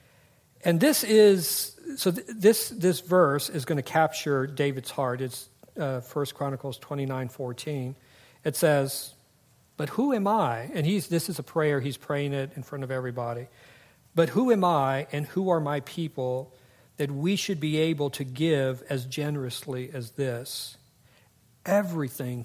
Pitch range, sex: 130-165 Hz, male